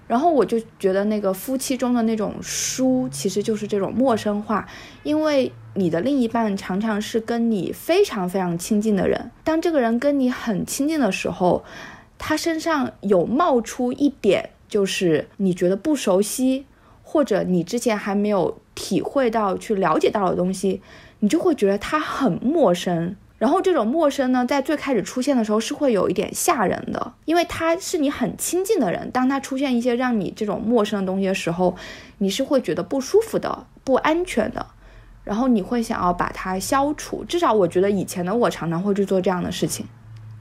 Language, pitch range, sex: Chinese, 195-275 Hz, female